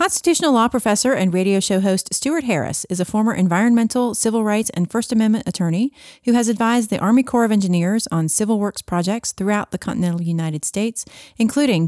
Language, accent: English, American